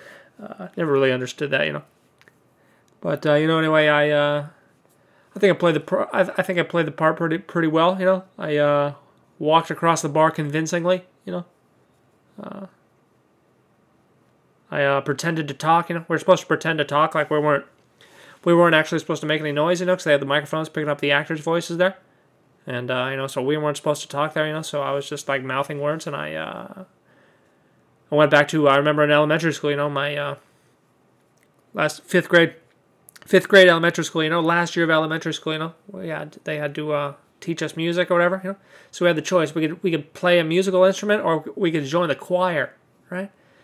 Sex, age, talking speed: male, 30-49, 230 wpm